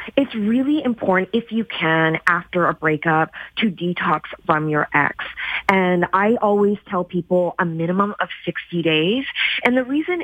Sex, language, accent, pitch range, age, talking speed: female, English, American, 175-240 Hz, 30-49, 160 wpm